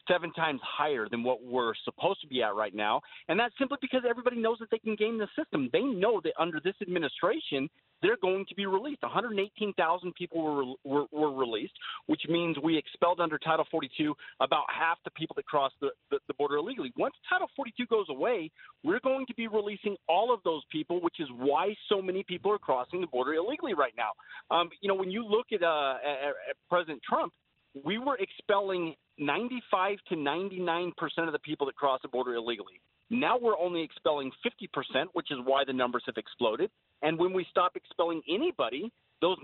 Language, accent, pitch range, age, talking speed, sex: English, American, 140-205 Hz, 30-49, 200 wpm, male